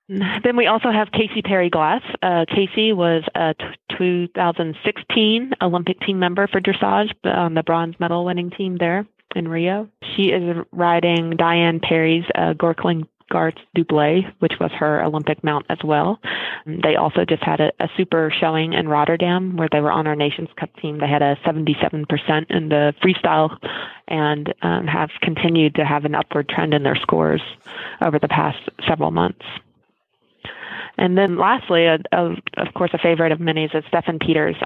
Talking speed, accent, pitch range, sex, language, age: 175 wpm, American, 160-180 Hz, female, English, 20-39